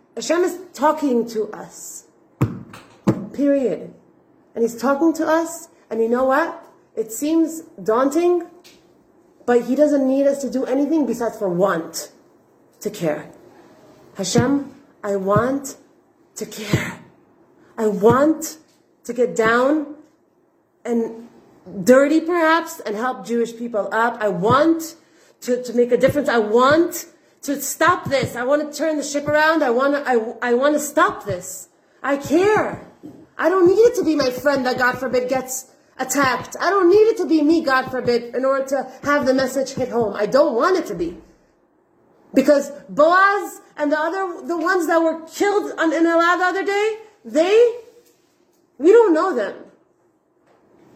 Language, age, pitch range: English, 30-49, 245-330 Hz